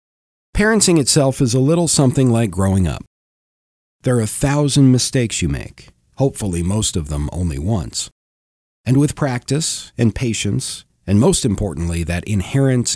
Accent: American